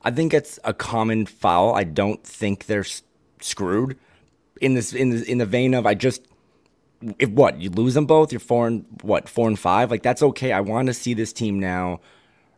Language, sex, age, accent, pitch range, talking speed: English, male, 30-49, American, 95-120 Hz, 210 wpm